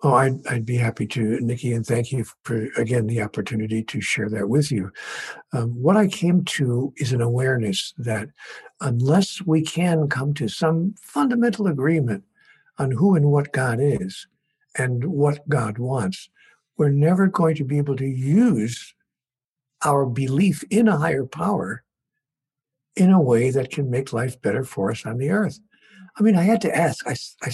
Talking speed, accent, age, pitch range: 175 wpm, American, 60-79, 130-190 Hz